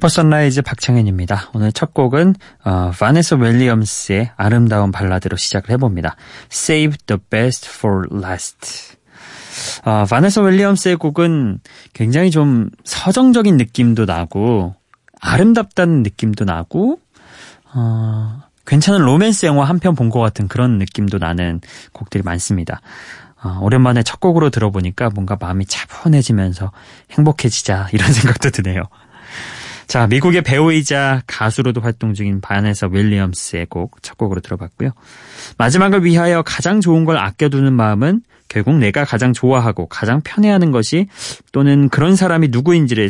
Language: Korean